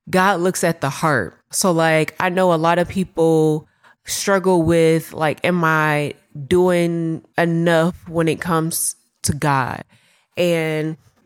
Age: 20-39